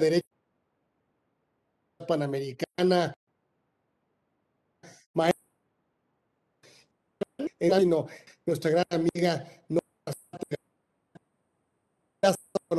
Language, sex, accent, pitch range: Spanish, male, Mexican, 170-200 Hz